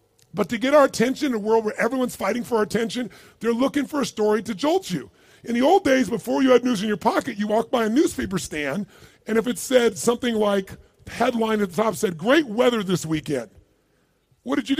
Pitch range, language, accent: 185-250 Hz, English, American